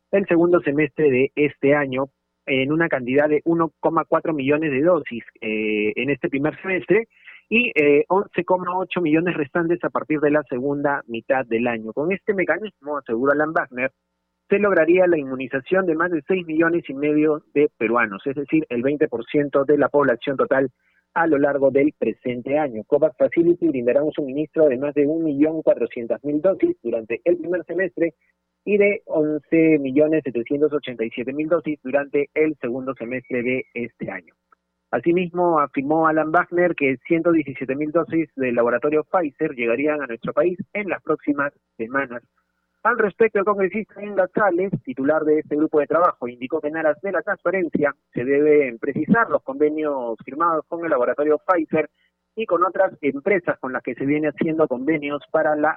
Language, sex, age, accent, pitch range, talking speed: Spanish, male, 30-49, Argentinian, 135-170 Hz, 160 wpm